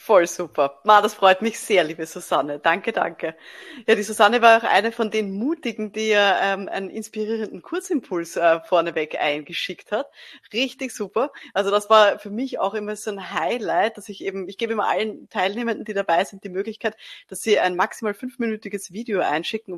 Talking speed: 180 wpm